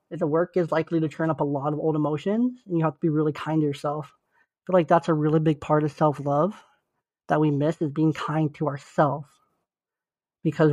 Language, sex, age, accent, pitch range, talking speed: English, male, 30-49, American, 150-170 Hz, 225 wpm